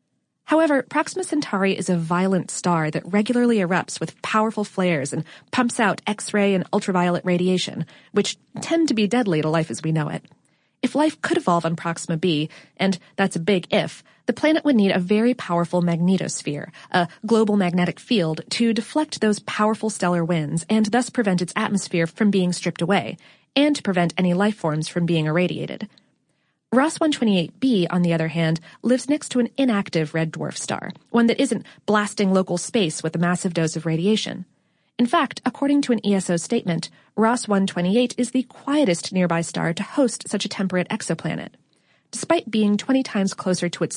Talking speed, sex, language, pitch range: 180 wpm, female, English, 175-235 Hz